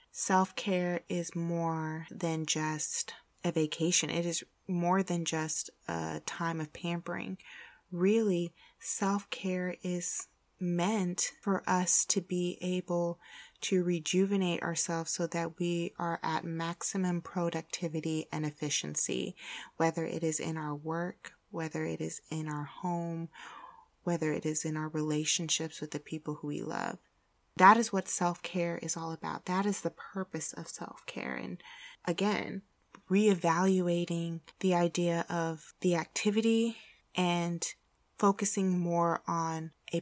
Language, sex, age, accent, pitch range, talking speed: English, female, 20-39, American, 165-190 Hz, 135 wpm